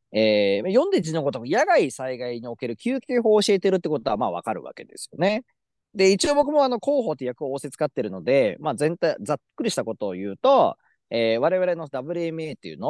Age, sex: 40-59, male